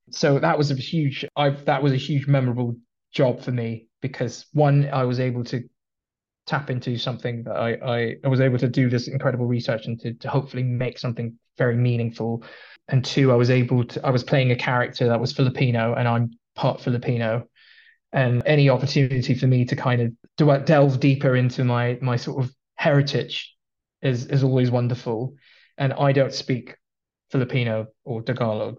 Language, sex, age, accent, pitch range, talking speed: English, male, 20-39, British, 120-140 Hz, 180 wpm